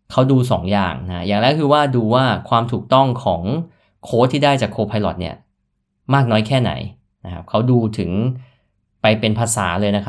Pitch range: 100-120 Hz